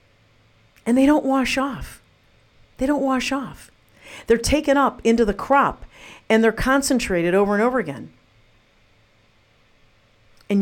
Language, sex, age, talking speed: English, female, 50-69, 130 wpm